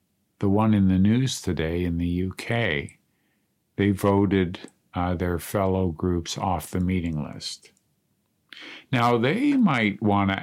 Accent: American